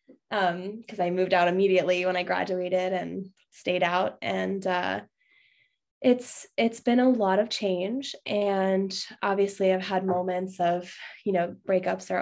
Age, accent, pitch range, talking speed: 10-29, American, 180-210 Hz, 150 wpm